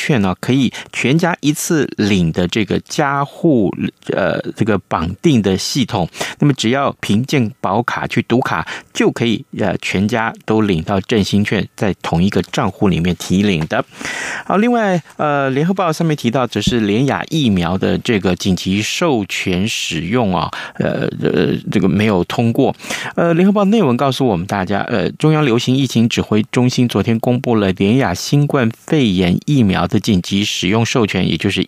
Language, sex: Chinese, male